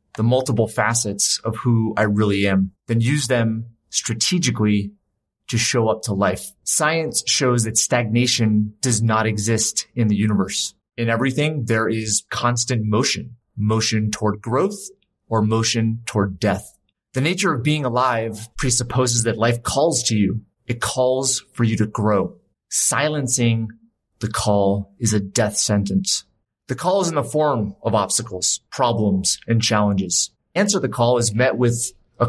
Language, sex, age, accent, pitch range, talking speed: English, male, 30-49, American, 105-130 Hz, 150 wpm